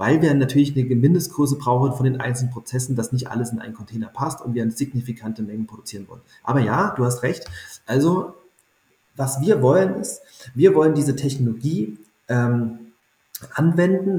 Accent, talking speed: German, 170 wpm